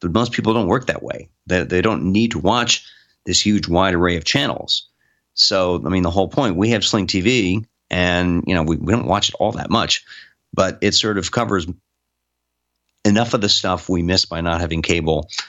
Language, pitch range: English, 85-100 Hz